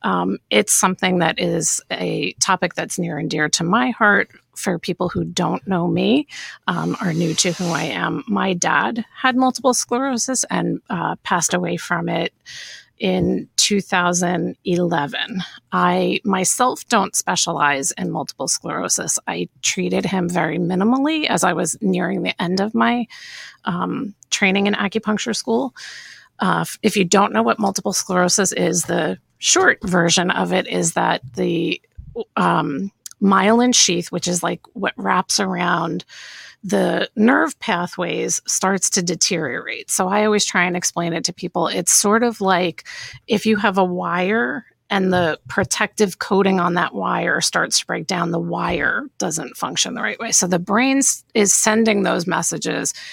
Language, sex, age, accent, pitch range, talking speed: English, female, 30-49, American, 175-215 Hz, 160 wpm